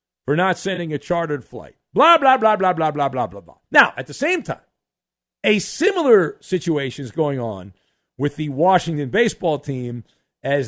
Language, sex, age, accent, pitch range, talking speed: English, male, 50-69, American, 140-200 Hz, 180 wpm